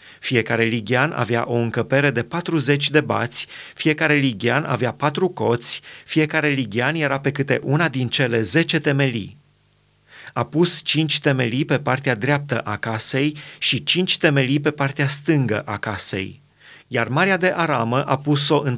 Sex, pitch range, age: male, 125-150 Hz, 30-49